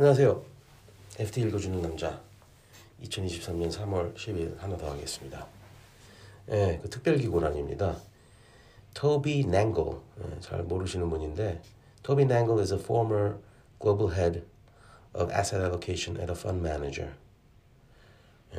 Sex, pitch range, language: male, 85-115 Hz, Korean